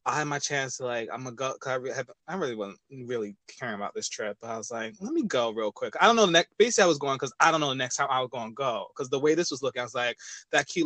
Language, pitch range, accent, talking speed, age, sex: English, 120-165 Hz, American, 345 wpm, 20-39, male